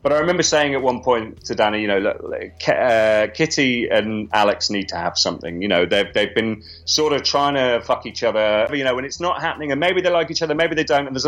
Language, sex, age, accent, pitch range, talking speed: English, male, 30-49, British, 110-145 Hz, 260 wpm